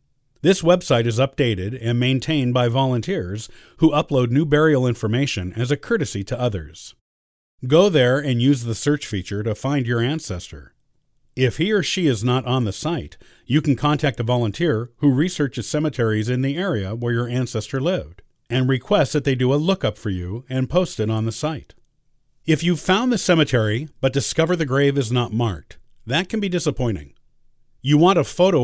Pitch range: 110-150 Hz